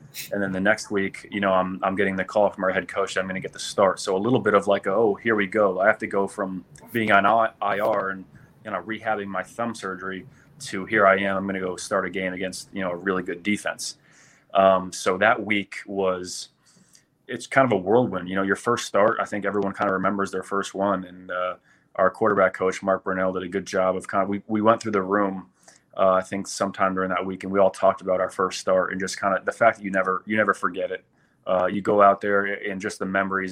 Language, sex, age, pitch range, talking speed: English, male, 30-49, 95-100 Hz, 260 wpm